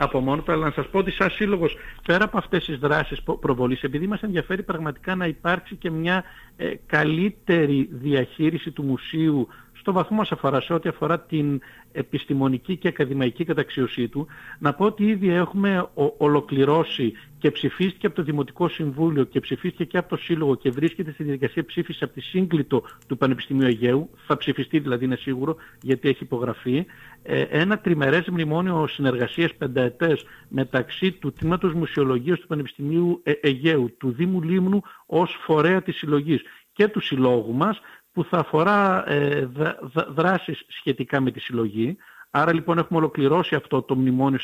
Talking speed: 155 wpm